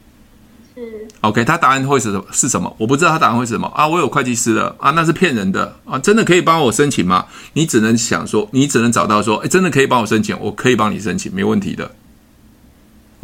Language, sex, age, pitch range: Chinese, male, 20-39, 110-150 Hz